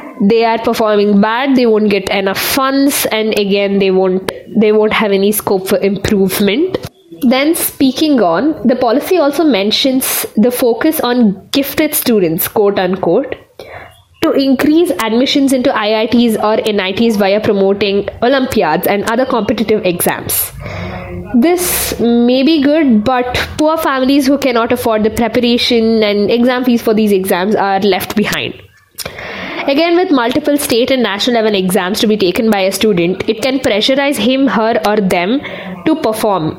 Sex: female